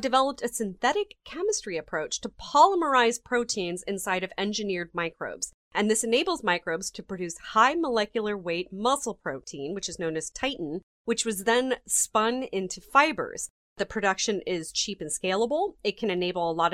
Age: 30-49